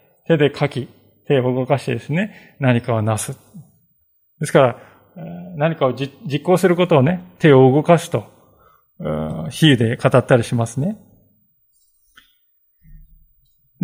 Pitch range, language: 130-170 Hz, Japanese